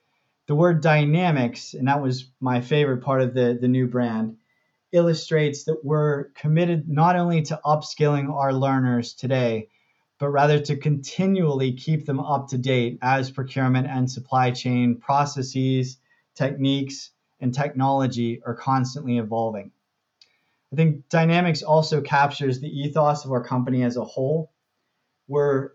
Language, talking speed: English, 140 wpm